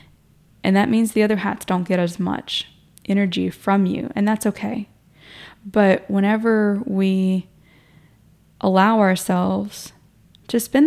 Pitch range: 180-205 Hz